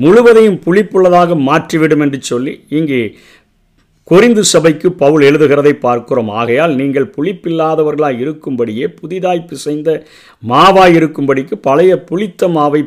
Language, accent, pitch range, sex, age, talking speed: Tamil, native, 135-170 Hz, male, 50-69, 95 wpm